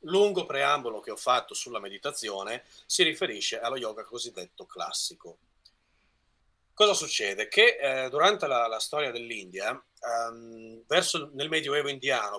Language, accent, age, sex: Italian, native, 30-49, male